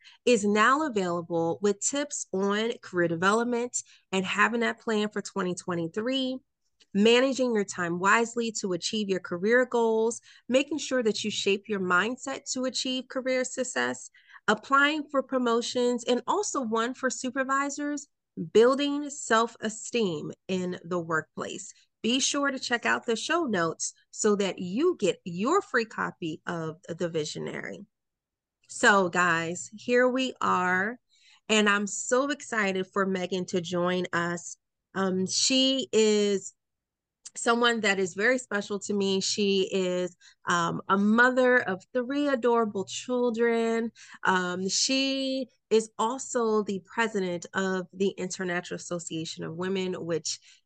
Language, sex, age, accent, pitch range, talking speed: English, female, 30-49, American, 185-255 Hz, 130 wpm